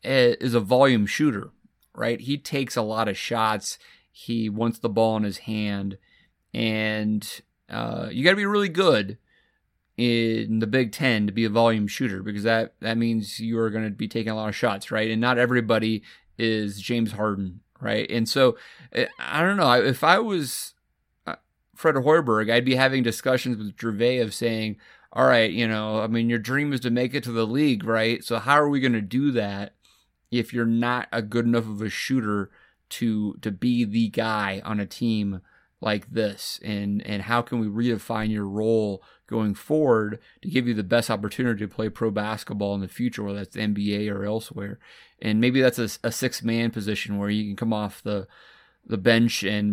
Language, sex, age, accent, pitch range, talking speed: English, male, 30-49, American, 105-120 Hz, 200 wpm